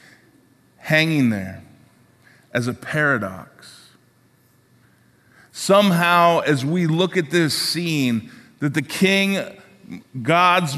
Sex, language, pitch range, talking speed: male, English, 125-165 Hz, 90 wpm